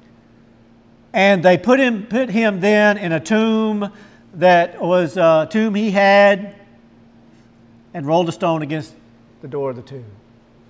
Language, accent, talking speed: English, American, 145 wpm